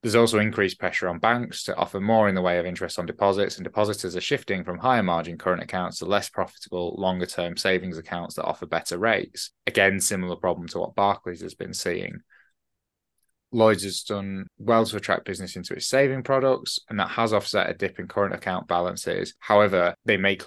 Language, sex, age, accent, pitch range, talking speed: English, male, 20-39, British, 90-105 Hz, 200 wpm